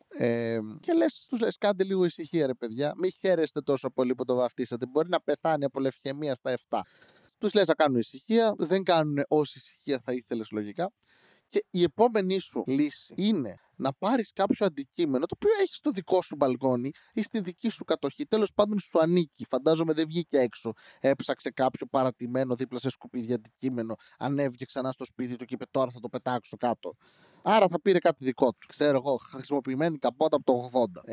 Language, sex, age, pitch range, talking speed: Greek, male, 20-39, 130-175 Hz, 180 wpm